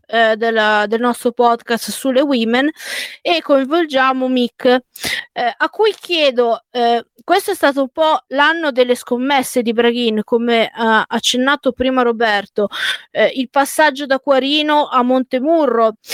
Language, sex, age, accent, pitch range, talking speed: Italian, female, 20-39, native, 240-295 Hz, 140 wpm